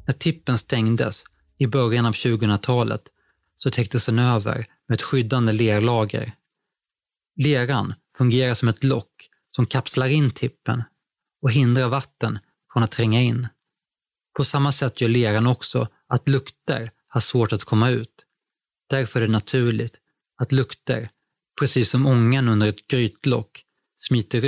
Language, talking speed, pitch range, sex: Swedish, 140 wpm, 110-130 Hz, male